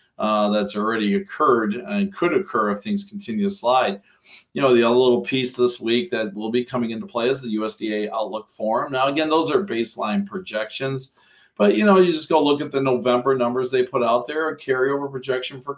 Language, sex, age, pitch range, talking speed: English, male, 50-69, 120-150 Hz, 215 wpm